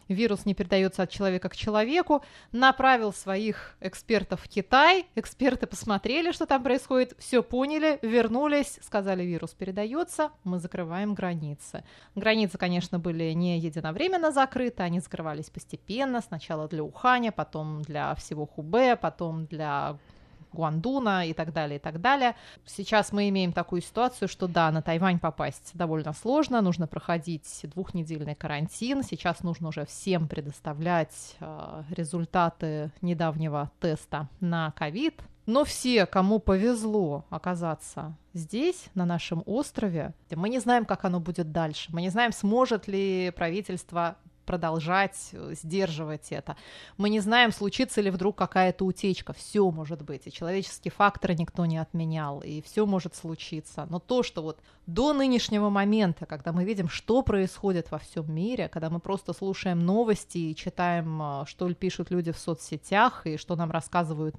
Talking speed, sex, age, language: 145 wpm, female, 20-39, Russian